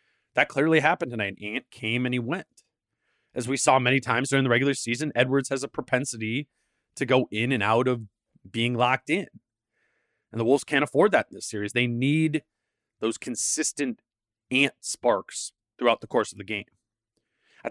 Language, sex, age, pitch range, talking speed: English, male, 20-39, 110-135 Hz, 180 wpm